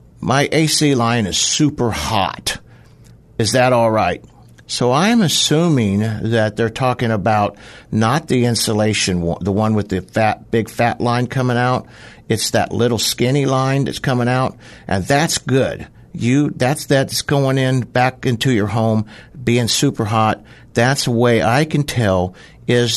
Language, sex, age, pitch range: English, male, 60-79, 100-125 Hz